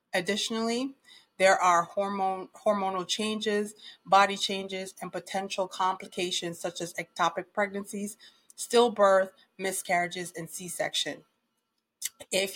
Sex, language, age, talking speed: female, English, 30-49, 95 wpm